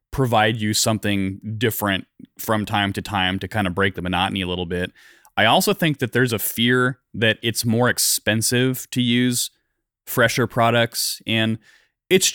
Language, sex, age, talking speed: English, male, 30-49, 165 wpm